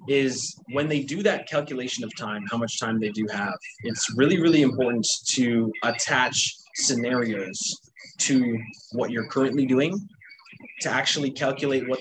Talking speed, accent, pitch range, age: 150 wpm, American, 115-145 Hz, 20-39